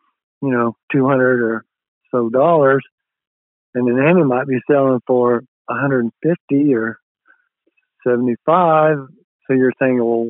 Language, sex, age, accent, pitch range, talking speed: English, male, 50-69, American, 115-130 Hz, 115 wpm